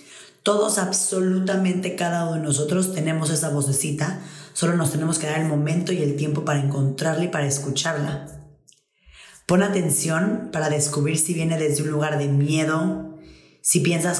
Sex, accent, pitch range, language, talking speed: female, Mexican, 150-175 Hz, Spanish, 155 wpm